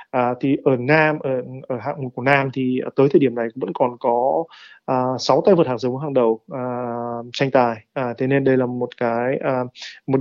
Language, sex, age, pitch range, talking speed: Vietnamese, male, 20-39, 125-145 Hz, 225 wpm